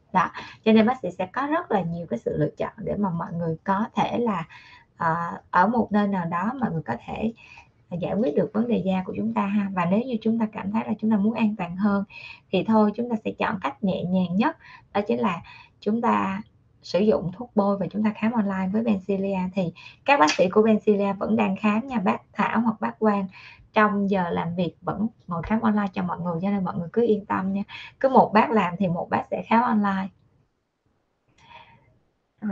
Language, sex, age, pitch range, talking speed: Vietnamese, female, 20-39, 185-220 Hz, 230 wpm